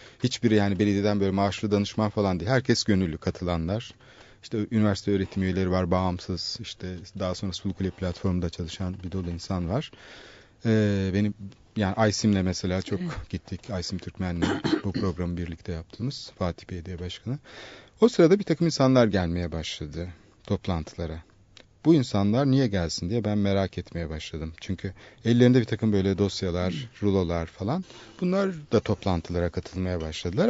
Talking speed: 145 wpm